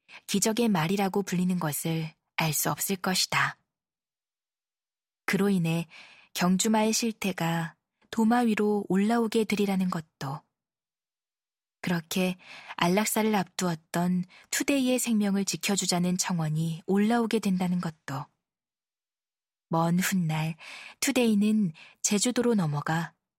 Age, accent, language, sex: 20-39, native, Korean, female